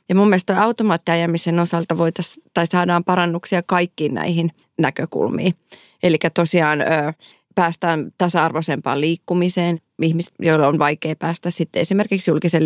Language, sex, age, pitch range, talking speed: Finnish, female, 30-49, 155-175 Hz, 125 wpm